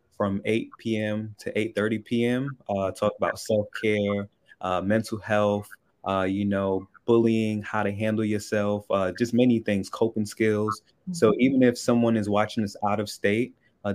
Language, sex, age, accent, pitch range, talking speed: English, male, 20-39, American, 100-110 Hz, 165 wpm